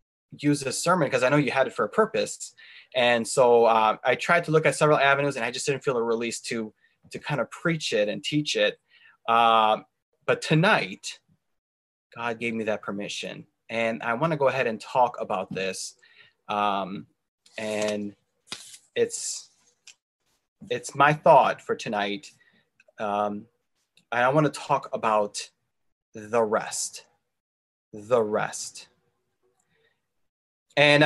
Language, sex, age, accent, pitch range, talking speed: English, male, 20-39, American, 115-150 Hz, 145 wpm